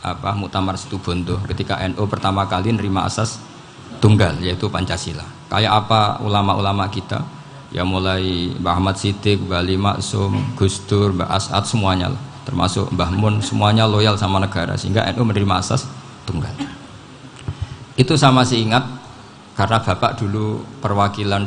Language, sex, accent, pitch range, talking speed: Indonesian, male, native, 95-125 Hz, 135 wpm